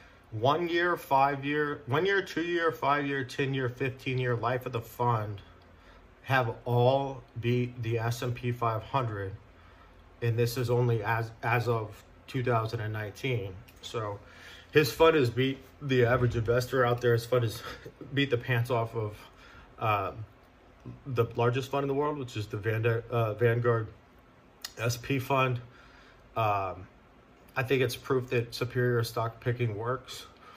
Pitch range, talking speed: 115-125 Hz, 145 wpm